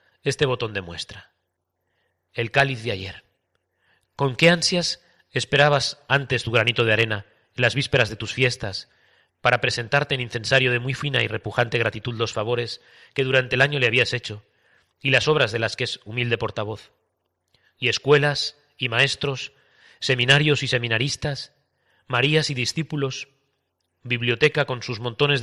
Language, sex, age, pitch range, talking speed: Spanish, male, 40-59, 115-135 Hz, 155 wpm